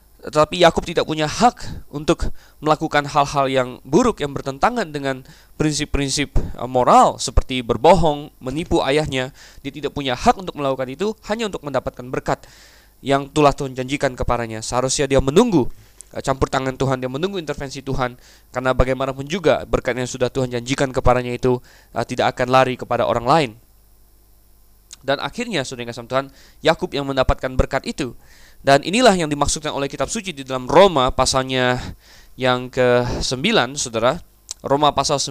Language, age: Indonesian, 20-39